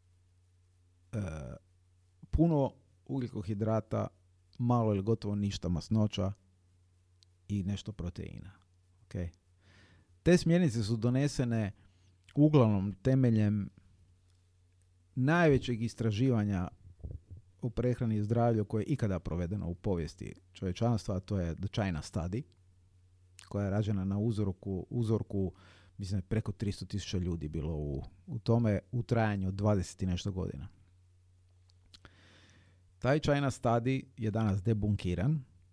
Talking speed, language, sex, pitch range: 105 wpm, Croatian, male, 90-110 Hz